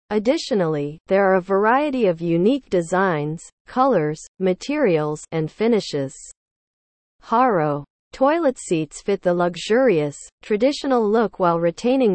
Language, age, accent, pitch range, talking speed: English, 40-59, American, 165-230 Hz, 110 wpm